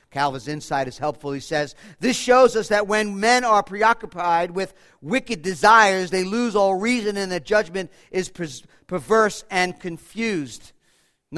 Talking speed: 155 wpm